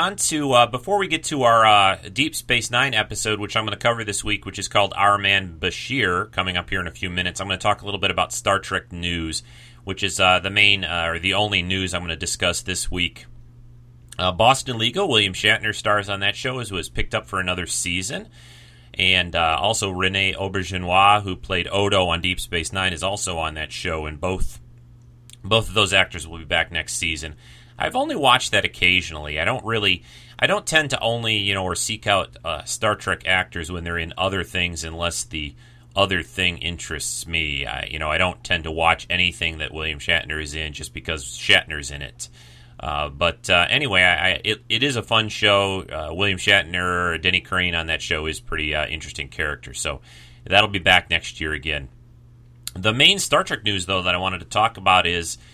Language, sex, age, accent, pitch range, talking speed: English, male, 30-49, American, 85-110 Hz, 215 wpm